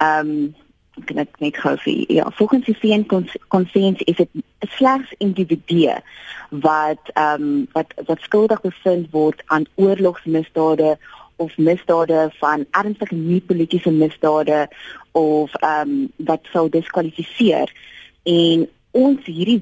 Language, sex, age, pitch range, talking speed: Dutch, female, 20-39, 155-195 Hz, 115 wpm